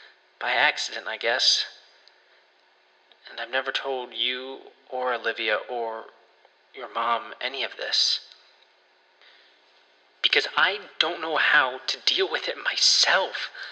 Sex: male